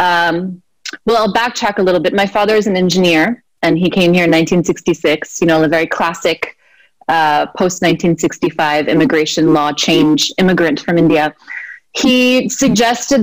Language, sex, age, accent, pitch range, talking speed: Hindi, female, 20-39, American, 165-220 Hz, 160 wpm